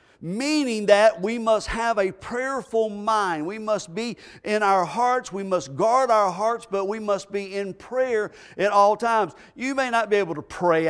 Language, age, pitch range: English, 50-69, 195-240 Hz